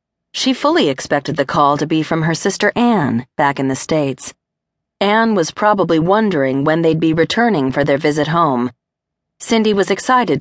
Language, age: English, 40-59